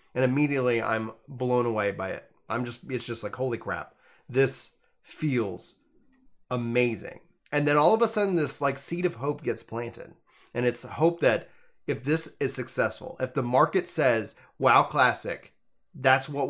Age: 30-49